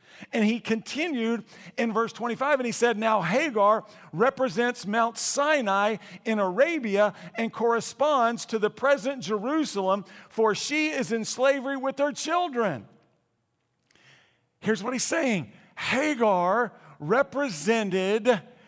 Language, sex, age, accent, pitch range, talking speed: English, male, 50-69, American, 215-260 Hz, 115 wpm